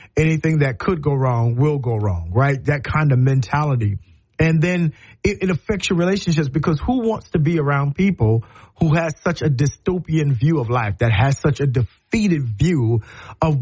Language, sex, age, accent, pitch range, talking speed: English, male, 40-59, American, 115-160 Hz, 185 wpm